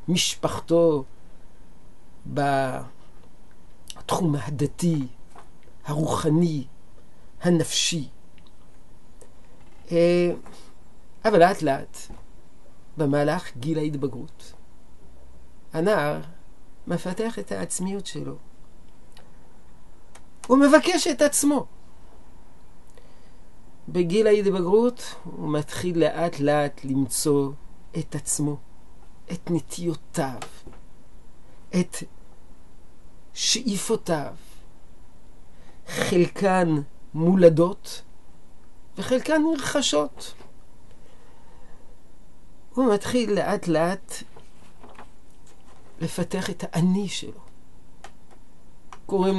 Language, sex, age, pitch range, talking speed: Hebrew, male, 50-69, 120-195 Hz, 55 wpm